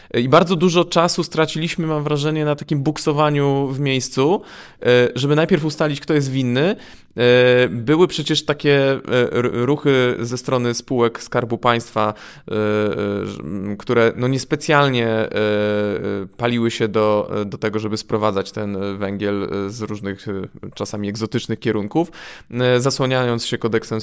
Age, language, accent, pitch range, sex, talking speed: 20-39, Polish, native, 115-155 Hz, male, 115 wpm